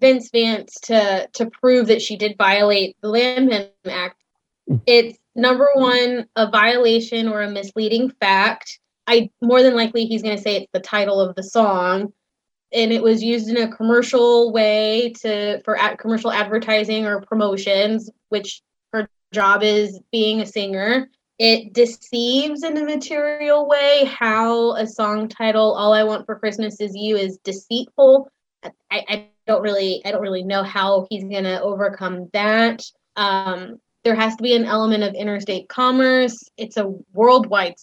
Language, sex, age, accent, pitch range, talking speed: English, female, 20-39, American, 200-235 Hz, 160 wpm